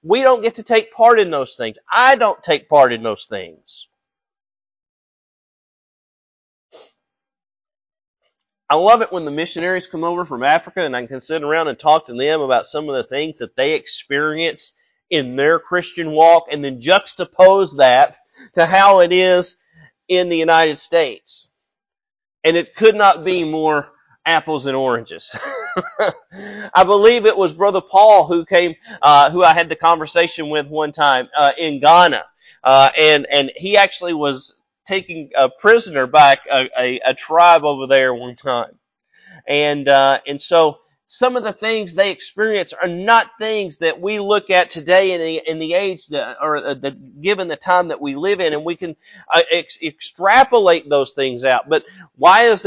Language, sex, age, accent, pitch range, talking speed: English, male, 30-49, American, 150-205 Hz, 170 wpm